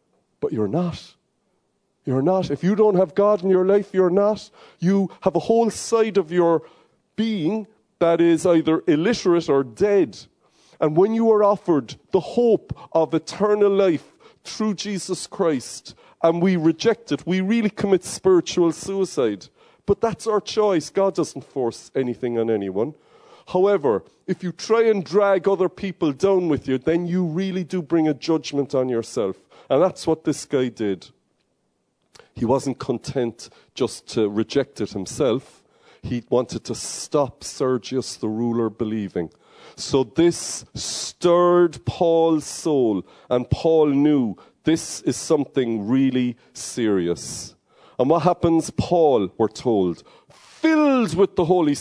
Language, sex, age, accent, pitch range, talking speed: English, male, 40-59, Irish, 135-195 Hz, 145 wpm